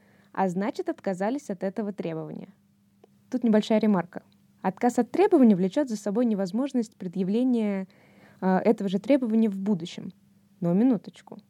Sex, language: female, Russian